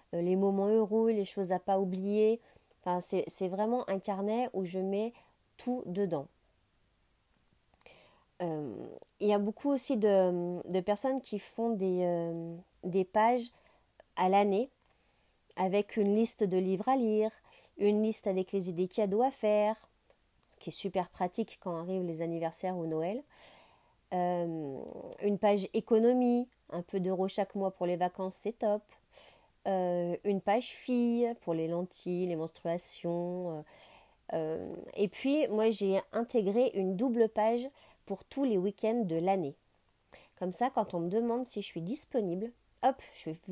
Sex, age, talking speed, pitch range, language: female, 40-59, 155 wpm, 180-225 Hz, French